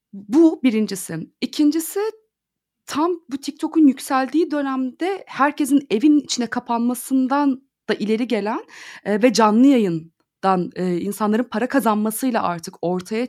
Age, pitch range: 30-49, 220-310 Hz